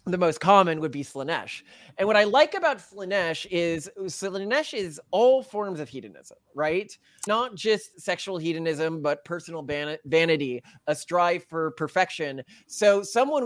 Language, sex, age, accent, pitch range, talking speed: English, male, 20-39, American, 150-190 Hz, 150 wpm